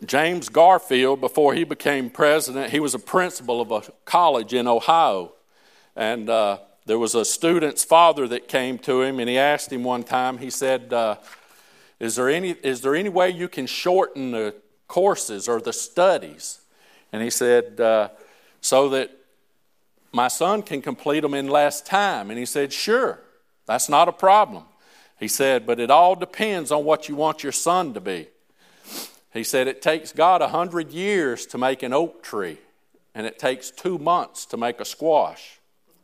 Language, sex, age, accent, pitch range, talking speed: English, male, 50-69, American, 125-170 Hz, 180 wpm